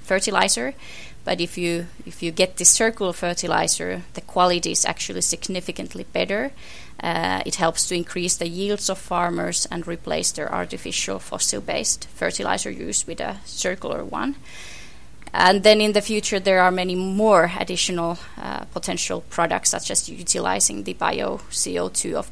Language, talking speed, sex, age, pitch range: English, 150 wpm, female, 20-39, 170-195 Hz